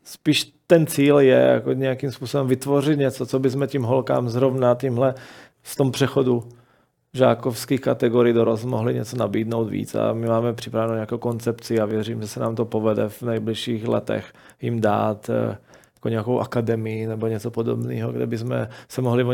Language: Czech